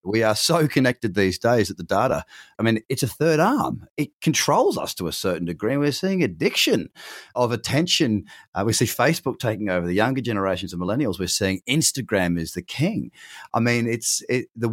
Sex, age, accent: male, 30-49, Australian